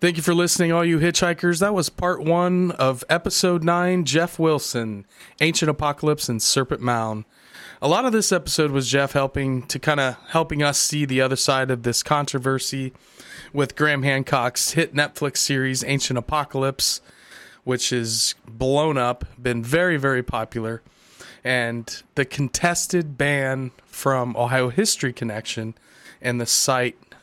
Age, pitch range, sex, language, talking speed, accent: 30-49, 125-155 Hz, male, English, 150 wpm, American